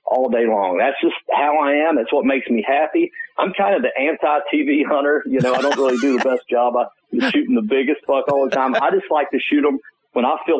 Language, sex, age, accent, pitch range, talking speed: English, male, 50-69, American, 130-215 Hz, 250 wpm